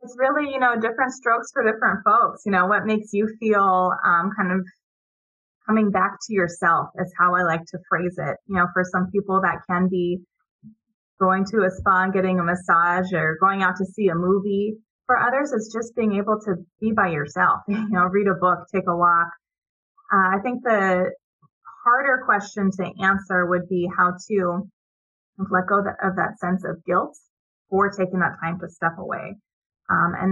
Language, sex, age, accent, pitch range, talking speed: English, female, 20-39, American, 175-200 Hz, 195 wpm